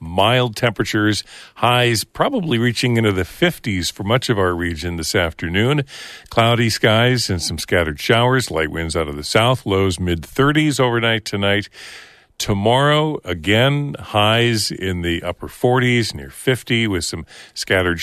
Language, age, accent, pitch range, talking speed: English, 50-69, American, 85-120 Hz, 145 wpm